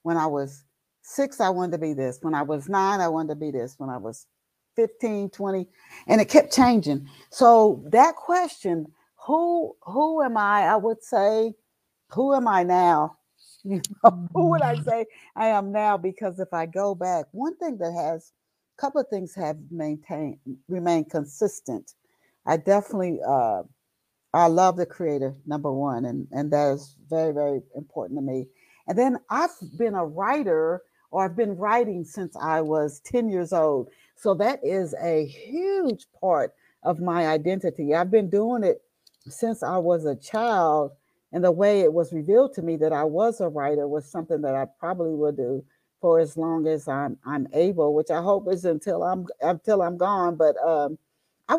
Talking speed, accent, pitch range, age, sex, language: 180 wpm, American, 155-210 Hz, 60-79, female, English